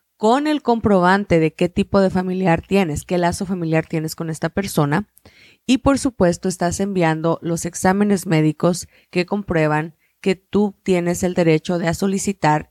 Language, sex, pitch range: Spanish, female, 170-200 Hz